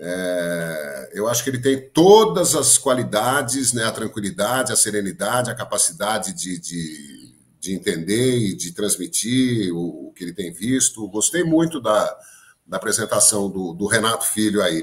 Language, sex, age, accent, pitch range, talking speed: Portuguese, male, 50-69, Brazilian, 95-135 Hz, 150 wpm